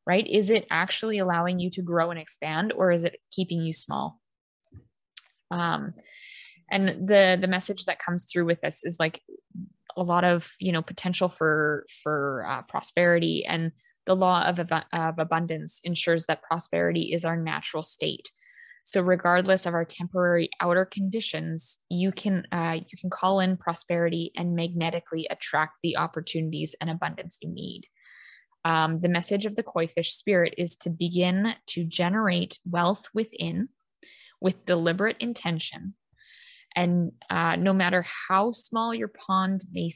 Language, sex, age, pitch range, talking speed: English, female, 20-39, 165-190 Hz, 155 wpm